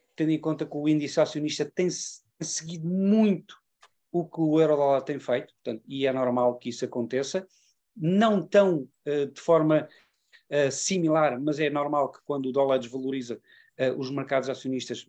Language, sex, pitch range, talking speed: Portuguese, male, 135-170 Hz, 165 wpm